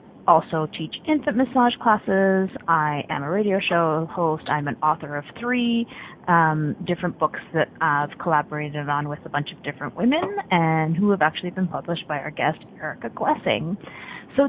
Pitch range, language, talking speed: 155-215 Hz, English, 170 wpm